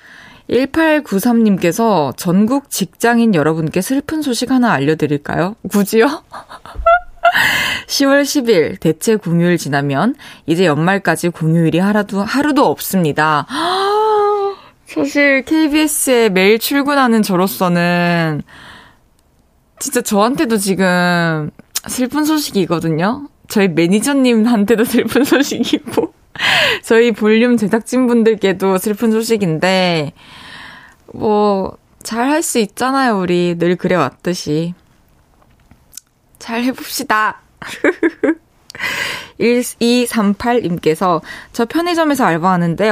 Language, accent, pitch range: Korean, native, 175-260 Hz